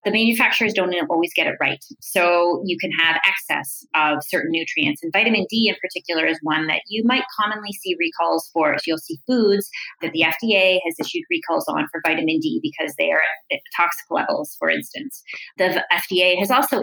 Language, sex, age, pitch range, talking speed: English, female, 30-49, 175-275 Hz, 195 wpm